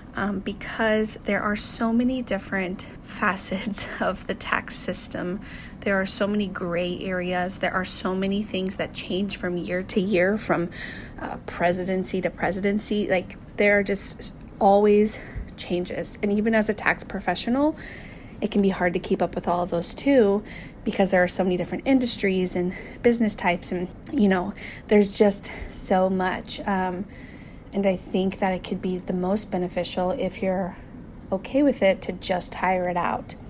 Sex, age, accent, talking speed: female, 30-49, American, 170 wpm